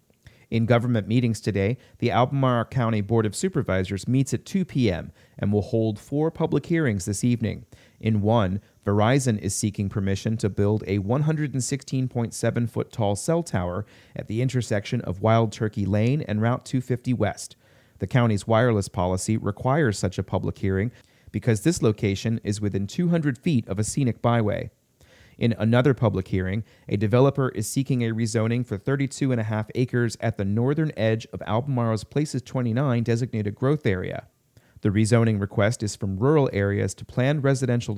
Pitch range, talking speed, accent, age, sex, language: 105-125 Hz, 160 wpm, American, 30-49, male, English